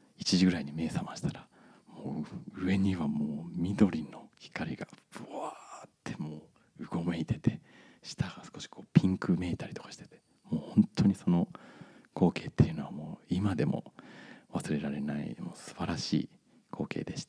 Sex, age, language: male, 40-59, Japanese